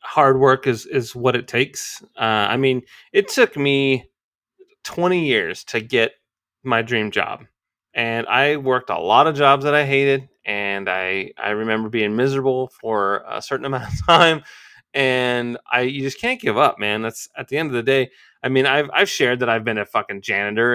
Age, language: 30-49, English